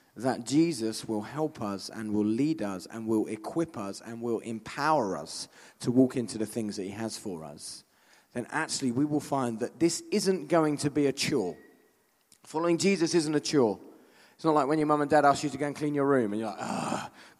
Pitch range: 130-170 Hz